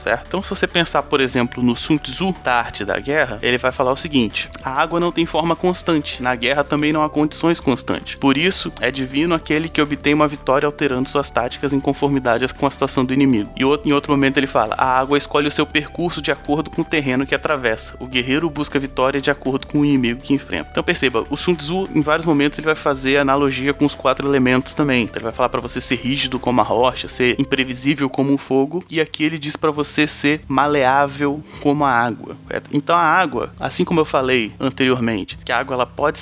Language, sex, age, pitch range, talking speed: Portuguese, male, 20-39, 130-150 Hz, 230 wpm